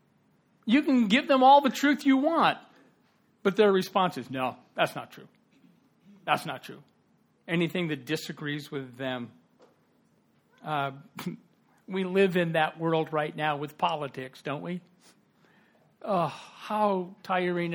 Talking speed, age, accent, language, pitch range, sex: 135 wpm, 60-79, American, English, 160-240 Hz, male